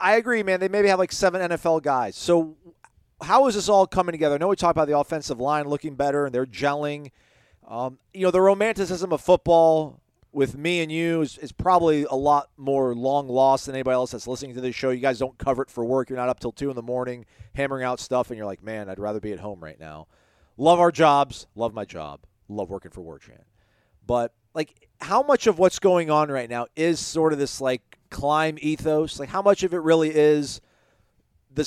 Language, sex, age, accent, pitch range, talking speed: English, male, 40-59, American, 125-160 Hz, 230 wpm